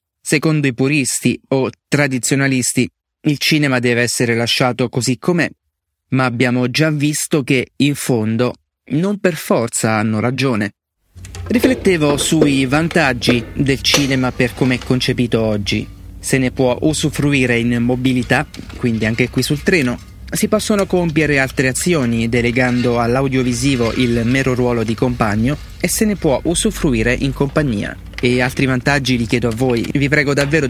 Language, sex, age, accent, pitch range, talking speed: Italian, male, 30-49, native, 120-145 Hz, 145 wpm